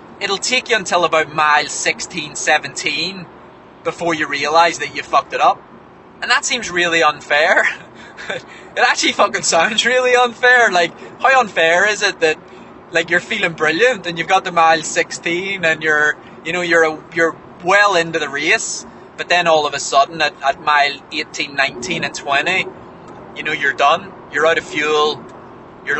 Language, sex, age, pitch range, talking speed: English, male, 20-39, 150-180 Hz, 175 wpm